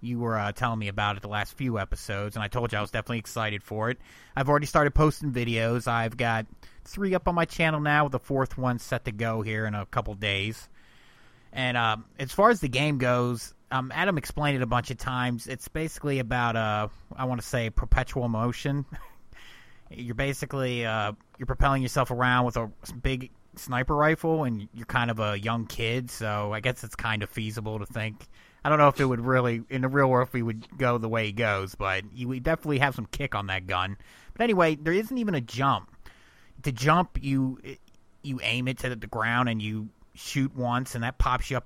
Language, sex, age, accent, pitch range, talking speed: English, male, 30-49, American, 110-135 Hz, 220 wpm